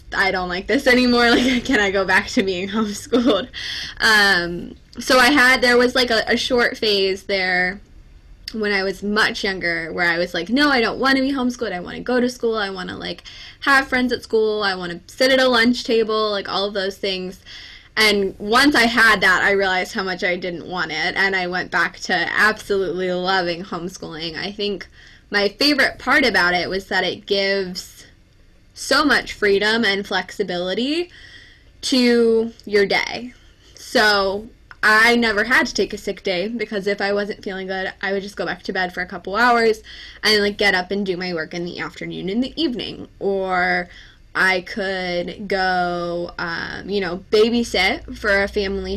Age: 10-29